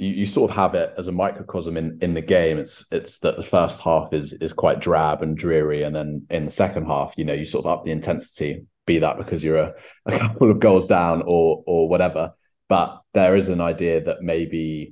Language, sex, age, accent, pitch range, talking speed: English, male, 30-49, British, 75-90 Hz, 235 wpm